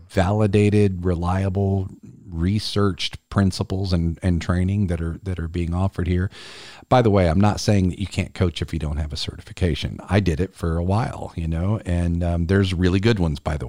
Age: 40-59